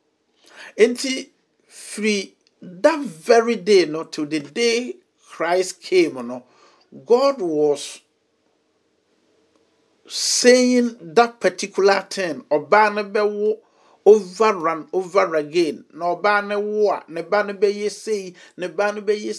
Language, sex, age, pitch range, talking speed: English, male, 50-69, 170-235 Hz, 90 wpm